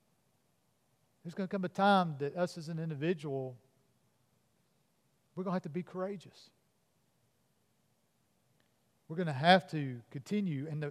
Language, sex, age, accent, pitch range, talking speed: English, male, 50-69, American, 135-180 Hz, 140 wpm